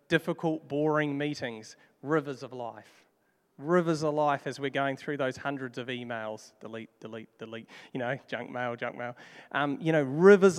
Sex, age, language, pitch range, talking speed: male, 40-59, English, 135-170 Hz, 170 wpm